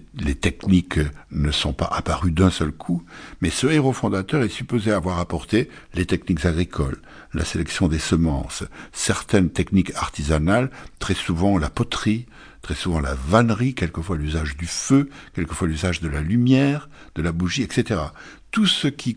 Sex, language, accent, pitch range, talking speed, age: male, French, French, 80-110 Hz, 160 wpm, 60-79